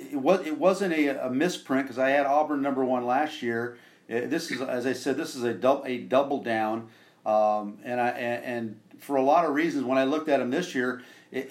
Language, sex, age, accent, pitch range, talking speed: English, male, 50-69, American, 115-145 Hz, 220 wpm